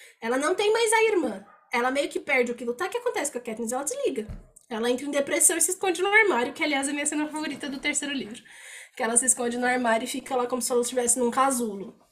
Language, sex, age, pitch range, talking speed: Portuguese, female, 10-29, 235-310 Hz, 265 wpm